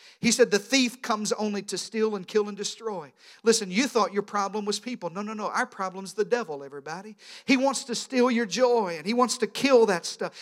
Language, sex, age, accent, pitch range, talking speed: English, male, 50-69, American, 205-250 Hz, 235 wpm